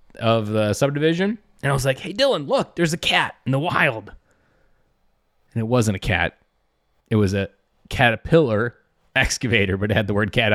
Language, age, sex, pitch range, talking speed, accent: English, 30-49, male, 110-155 Hz, 180 wpm, American